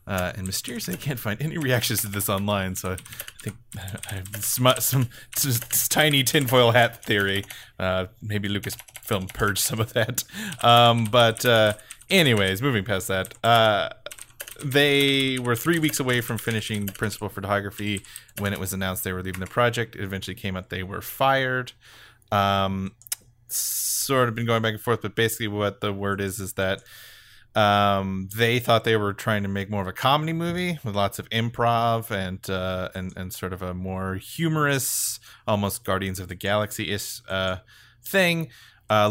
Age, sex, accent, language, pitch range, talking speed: 30-49, male, American, English, 95-120 Hz, 170 wpm